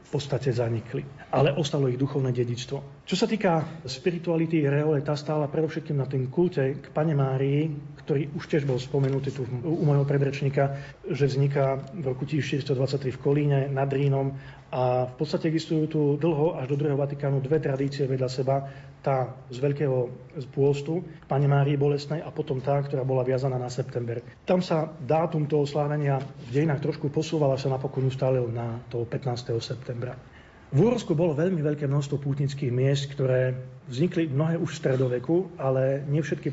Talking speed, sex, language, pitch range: 170 wpm, male, Slovak, 135-155 Hz